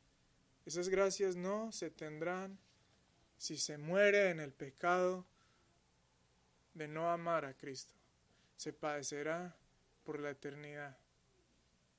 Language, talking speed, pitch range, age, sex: Spanish, 105 wpm, 135-180 Hz, 30-49, male